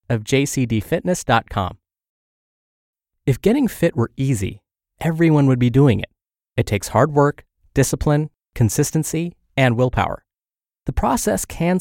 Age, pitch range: 30-49, 110-155 Hz